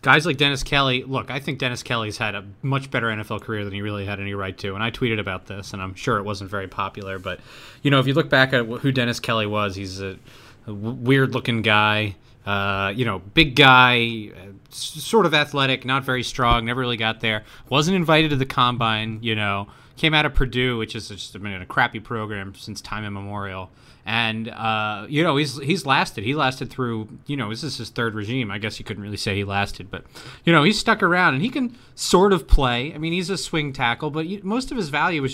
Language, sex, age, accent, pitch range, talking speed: English, male, 30-49, American, 105-135 Hz, 235 wpm